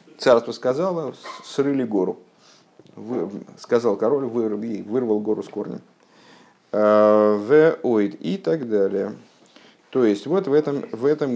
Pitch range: 105-135 Hz